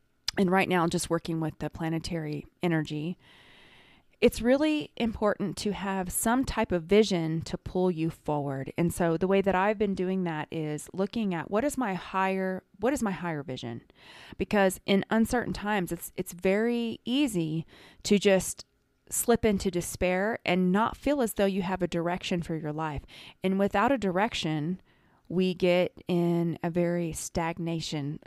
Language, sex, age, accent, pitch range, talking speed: English, female, 20-39, American, 165-200 Hz, 165 wpm